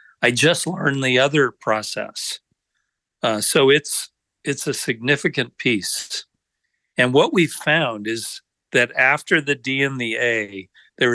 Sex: male